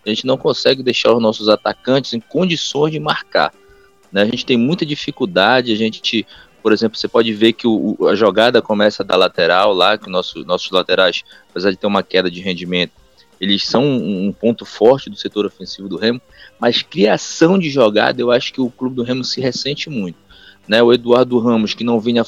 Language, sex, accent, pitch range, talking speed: Portuguese, male, Brazilian, 110-150 Hz, 205 wpm